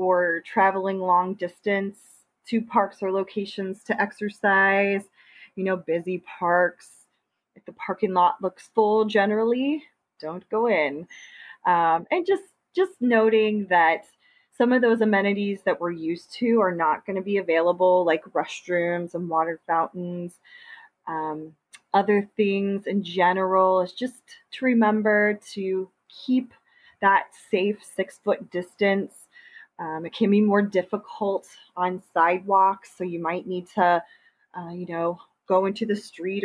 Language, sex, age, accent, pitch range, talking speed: English, female, 20-39, American, 180-215 Hz, 140 wpm